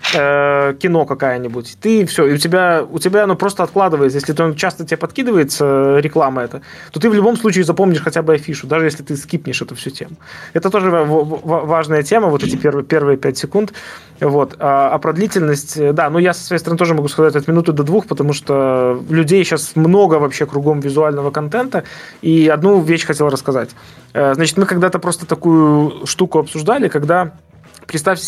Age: 20-39